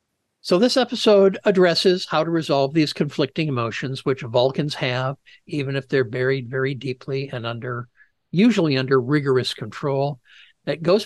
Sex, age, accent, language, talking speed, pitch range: male, 60-79, American, English, 145 wpm, 130-170 Hz